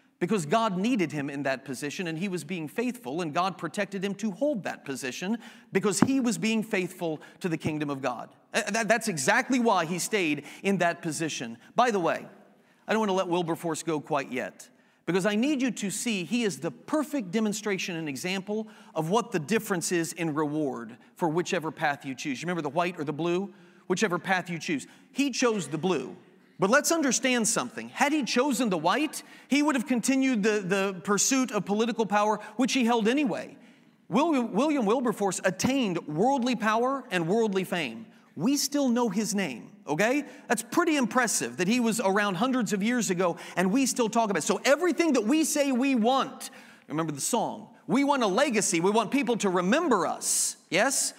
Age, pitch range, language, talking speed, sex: 40-59, 180-250 Hz, English, 195 wpm, male